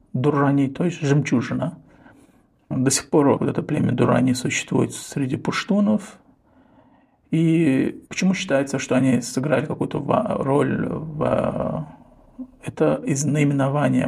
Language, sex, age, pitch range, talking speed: Russian, male, 50-69, 130-160 Hz, 110 wpm